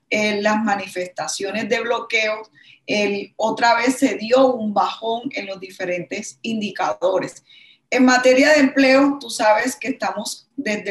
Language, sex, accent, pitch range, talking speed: Spanish, female, American, 205-255 Hz, 130 wpm